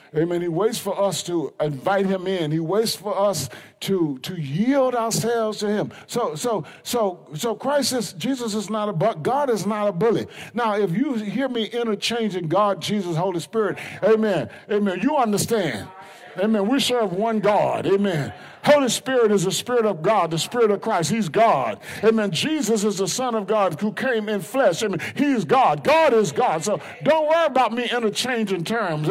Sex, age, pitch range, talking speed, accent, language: male, 50-69, 195-270 Hz, 195 wpm, American, English